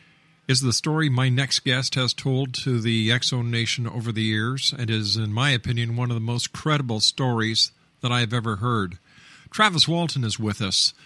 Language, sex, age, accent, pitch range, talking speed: English, male, 50-69, American, 115-145 Hz, 195 wpm